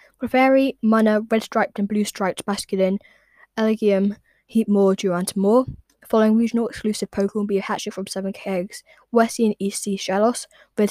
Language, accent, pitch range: English, British, 195-230 Hz